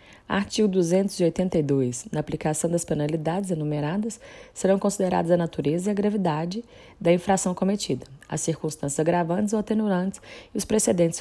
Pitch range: 155-185 Hz